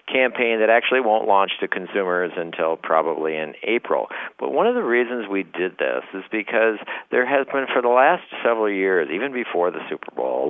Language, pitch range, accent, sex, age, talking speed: English, 95-130 Hz, American, male, 50-69, 200 wpm